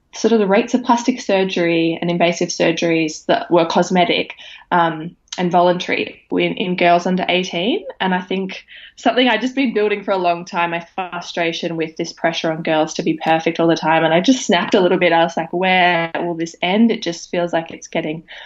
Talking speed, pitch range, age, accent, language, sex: 215 wpm, 165-195 Hz, 20-39, Australian, English, female